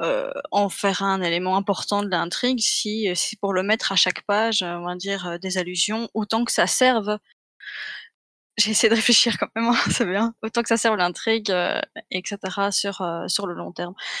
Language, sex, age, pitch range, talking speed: French, female, 20-39, 185-225 Hz, 200 wpm